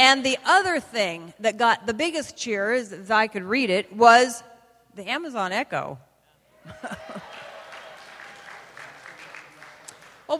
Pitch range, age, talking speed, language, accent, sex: 175-230 Hz, 40-59, 110 wpm, English, American, female